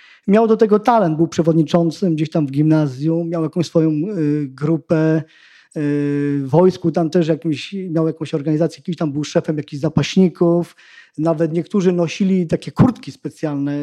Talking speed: 150 wpm